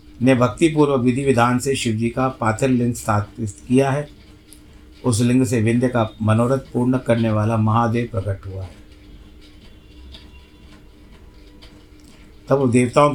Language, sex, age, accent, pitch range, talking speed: Hindi, male, 50-69, native, 100-135 Hz, 125 wpm